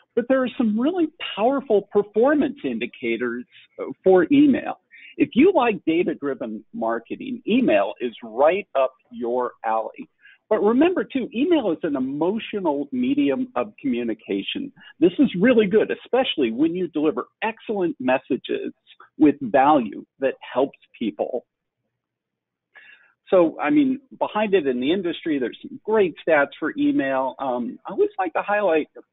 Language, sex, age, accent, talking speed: English, male, 50-69, American, 135 wpm